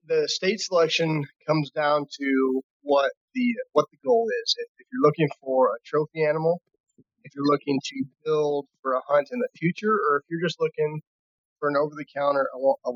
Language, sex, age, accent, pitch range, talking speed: English, male, 30-49, American, 135-215 Hz, 190 wpm